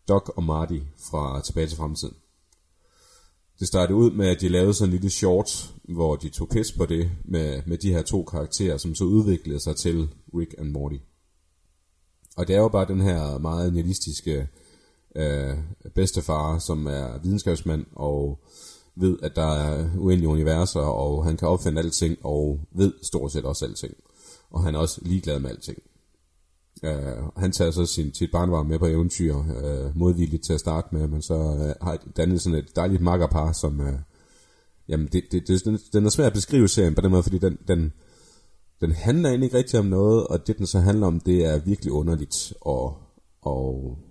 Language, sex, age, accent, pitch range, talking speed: Danish, male, 30-49, native, 75-90 Hz, 185 wpm